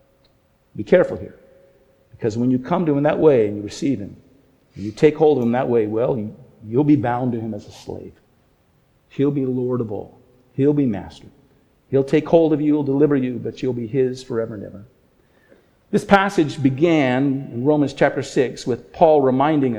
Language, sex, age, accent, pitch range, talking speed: English, male, 50-69, American, 125-150 Hz, 195 wpm